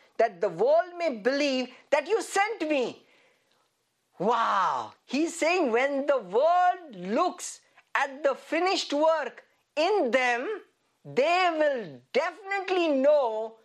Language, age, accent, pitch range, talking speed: English, 50-69, Indian, 235-345 Hz, 115 wpm